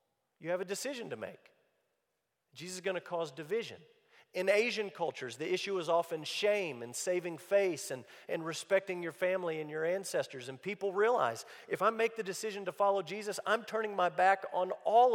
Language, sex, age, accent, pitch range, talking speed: English, male, 40-59, American, 160-250 Hz, 190 wpm